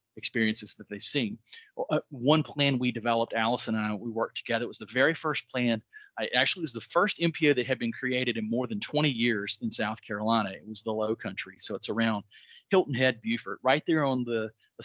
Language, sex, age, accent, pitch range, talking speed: English, male, 40-59, American, 110-130 Hz, 220 wpm